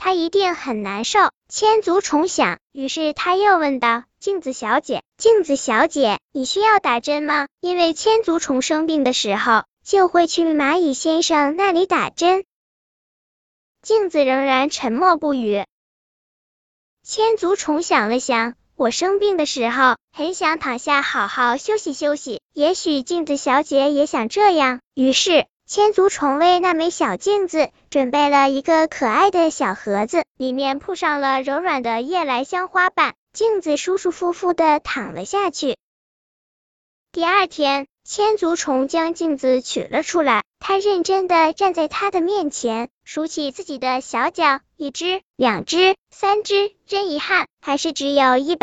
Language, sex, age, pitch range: Chinese, male, 10-29, 270-365 Hz